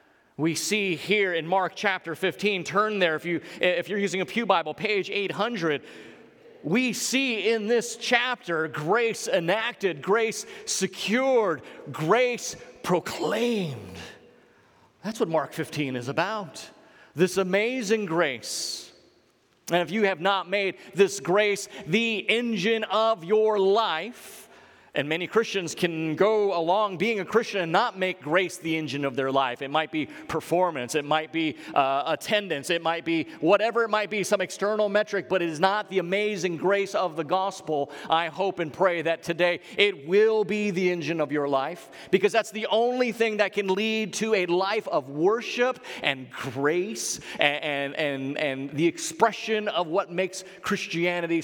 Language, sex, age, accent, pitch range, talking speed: English, male, 30-49, American, 160-210 Hz, 160 wpm